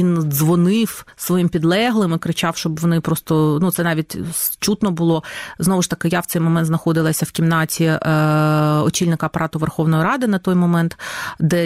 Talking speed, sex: 165 wpm, female